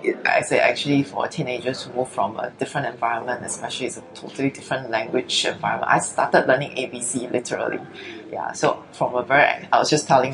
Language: English